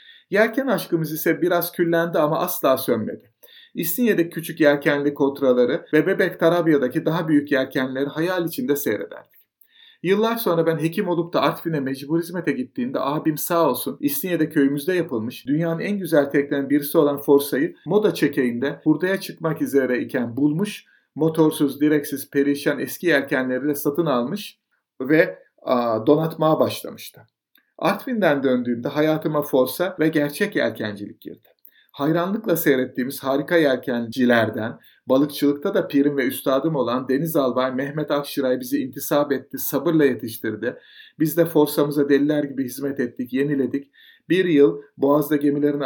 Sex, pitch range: male, 135-165 Hz